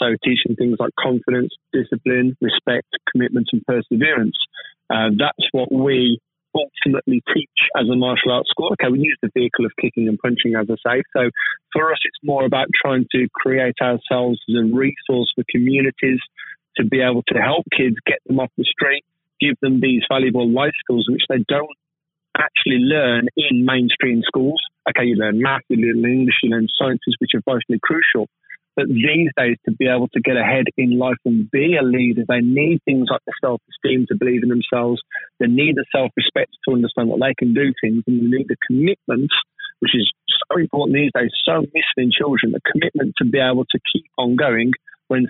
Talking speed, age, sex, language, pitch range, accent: 200 wpm, 30-49, male, English, 120-135 Hz, British